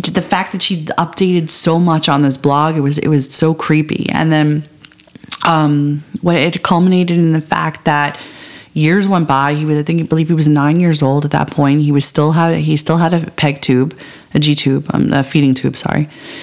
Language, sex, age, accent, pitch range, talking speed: English, female, 30-49, American, 150-175 Hz, 225 wpm